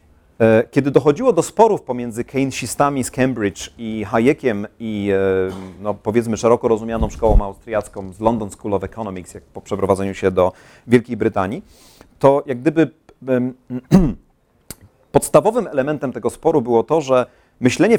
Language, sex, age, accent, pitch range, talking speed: Polish, male, 40-59, native, 115-155 Hz, 125 wpm